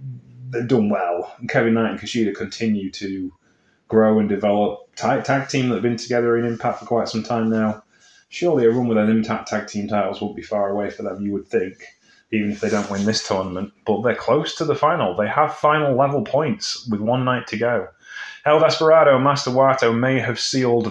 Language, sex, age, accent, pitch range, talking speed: English, male, 30-49, British, 105-120 Hz, 220 wpm